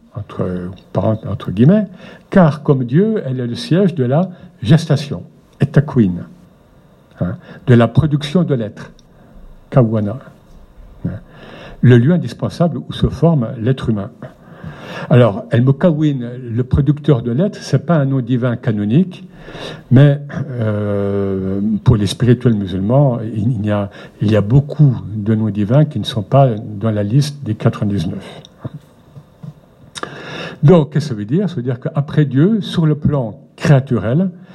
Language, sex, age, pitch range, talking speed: French, male, 60-79, 115-165 Hz, 145 wpm